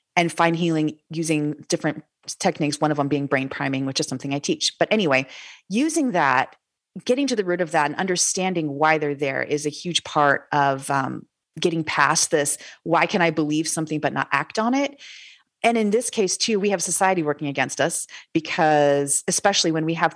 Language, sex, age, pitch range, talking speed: English, female, 30-49, 150-190 Hz, 200 wpm